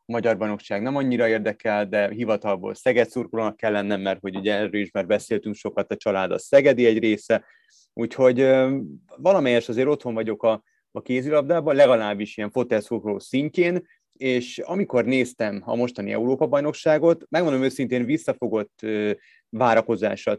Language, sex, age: Hungarian, male, 30-49